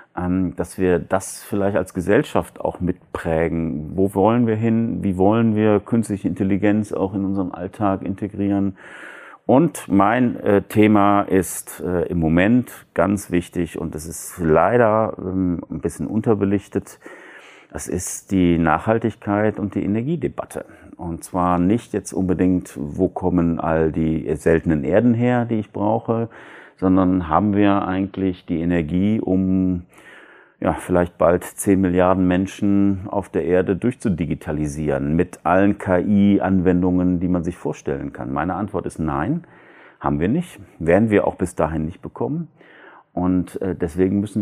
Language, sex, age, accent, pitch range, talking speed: German, male, 40-59, German, 90-105 Hz, 135 wpm